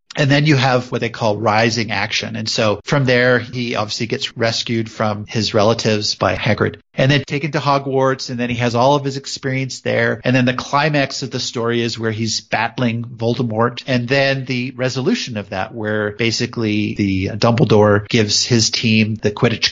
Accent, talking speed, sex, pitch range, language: American, 190 wpm, male, 110-135 Hz, English